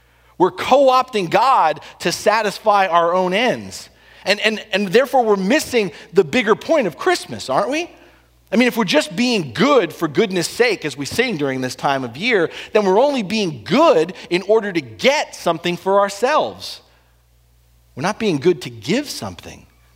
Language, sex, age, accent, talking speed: English, male, 40-59, American, 175 wpm